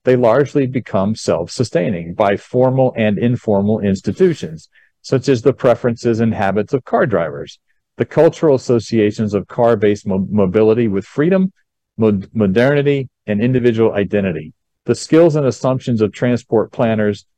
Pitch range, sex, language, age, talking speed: 105-135 Hz, male, English, 40-59, 130 wpm